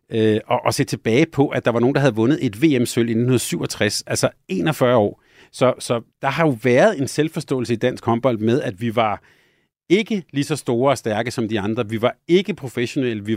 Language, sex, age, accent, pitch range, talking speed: Danish, male, 30-49, native, 110-135 Hz, 225 wpm